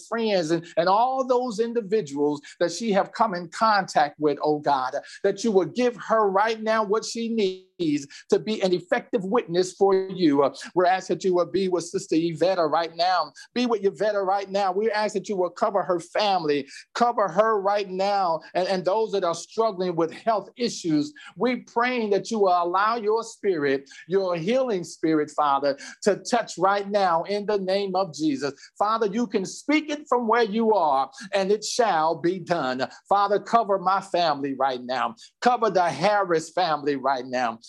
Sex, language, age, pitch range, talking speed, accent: male, English, 50-69, 170-225 Hz, 185 wpm, American